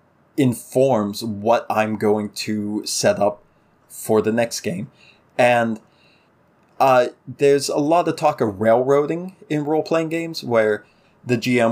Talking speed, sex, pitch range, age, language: 135 wpm, male, 110-135 Hz, 20-39, English